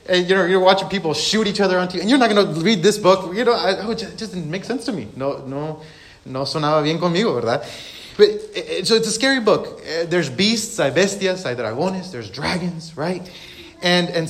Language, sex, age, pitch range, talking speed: English, male, 30-49, 135-190 Hz, 230 wpm